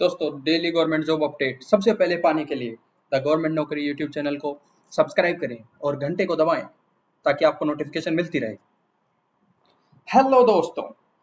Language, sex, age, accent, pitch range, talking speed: Hindi, male, 20-39, native, 150-175 Hz, 155 wpm